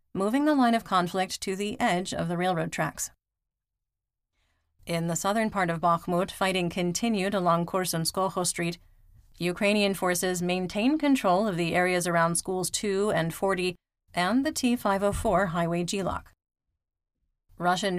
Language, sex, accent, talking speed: English, female, American, 135 wpm